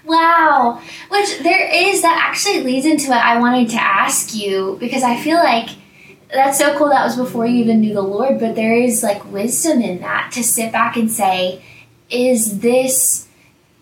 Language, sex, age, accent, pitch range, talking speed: English, female, 10-29, American, 205-260 Hz, 185 wpm